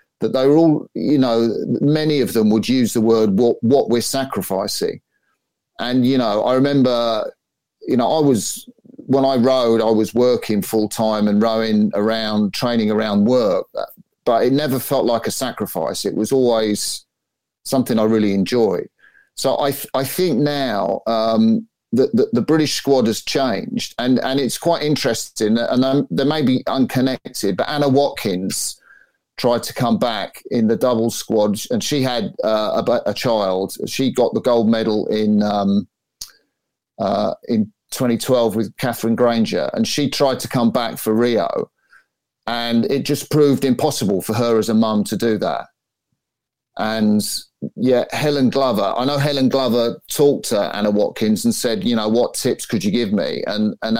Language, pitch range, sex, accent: English, 110-140 Hz, male, British